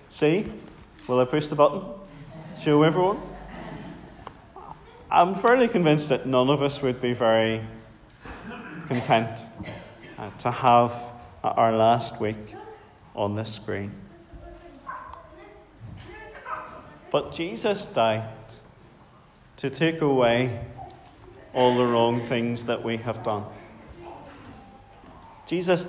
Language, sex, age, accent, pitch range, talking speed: English, male, 30-49, British, 115-145 Hz, 95 wpm